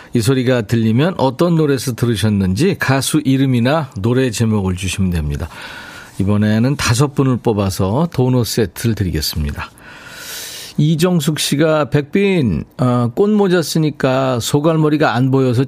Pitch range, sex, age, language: 110-160 Hz, male, 40-59, Korean